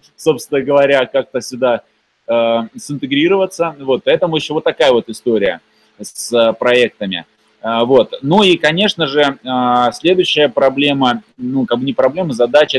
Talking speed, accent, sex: 140 wpm, native, male